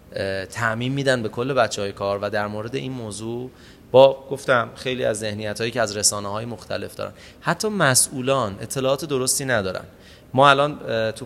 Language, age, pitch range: Persian, 30-49, 105-135 Hz